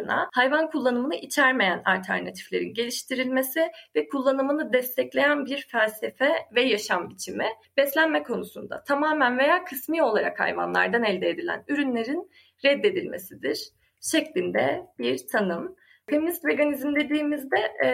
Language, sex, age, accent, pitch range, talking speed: Turkish, female, 30-49, native, 245-315 Hz, 105 wpm